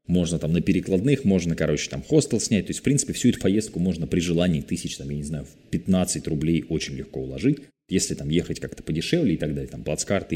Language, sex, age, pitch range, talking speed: Russian, male, 20-39, 80-105 Hz, 225 wpm